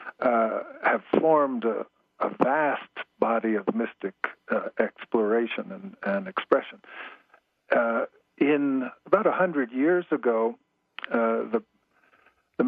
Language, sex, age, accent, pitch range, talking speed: English, male, 50-69, American, 115-165 Hz, 115 wpm